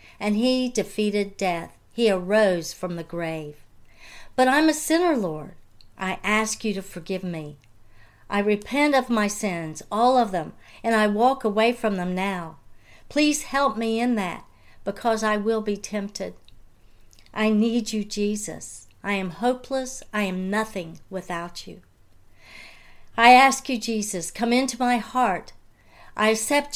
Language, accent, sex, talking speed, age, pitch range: English, American, female, 150 wpm, 60-79, 175-230 Hz